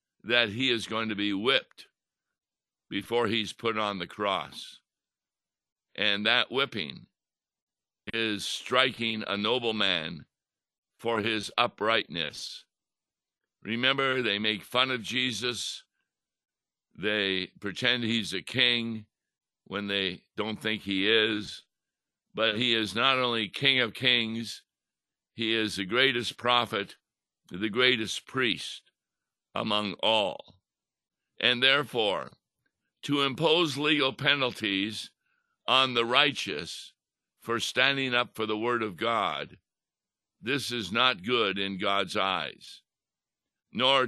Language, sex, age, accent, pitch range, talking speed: English, male, 60-79, American, 105-125 Hz, 115 wpm